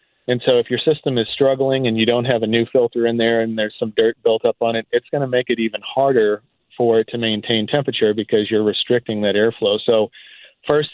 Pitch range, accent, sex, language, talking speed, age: 115-125 Hz, American, male, English, 235 wpm, 40-59